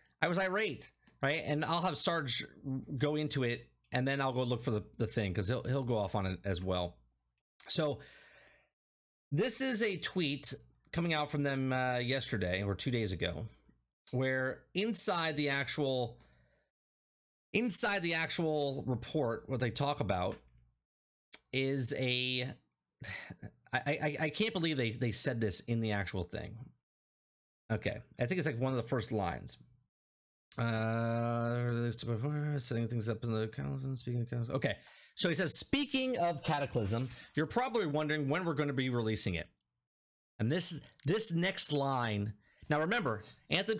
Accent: American